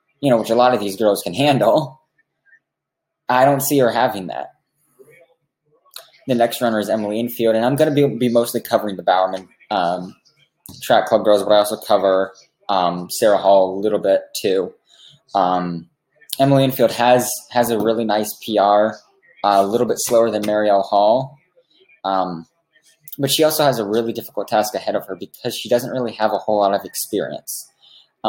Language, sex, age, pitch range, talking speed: English, male, 20-39, 105-130 Hz, 180 wpm